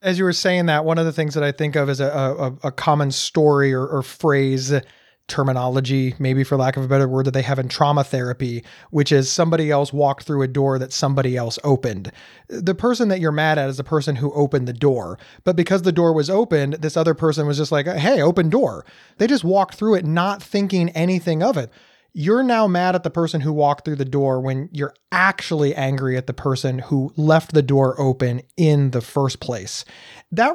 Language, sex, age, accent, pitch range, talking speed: English, male, 30-49, American, 140-175 Hz, 225 wpm